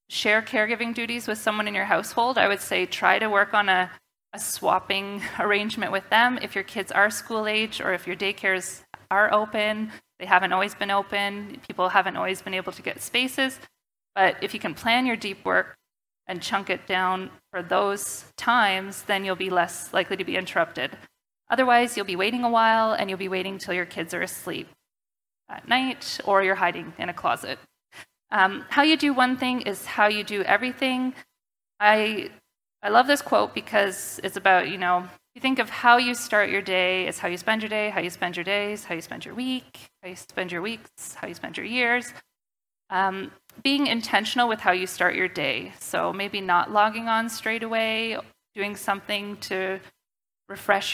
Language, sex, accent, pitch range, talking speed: English, female, American, 190-230 Hz, 195 wpm